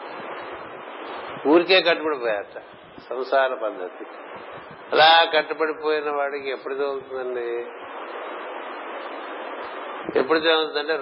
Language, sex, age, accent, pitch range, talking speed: Telugu, male, 50-69, native, 125-150 Hz, 60 wpm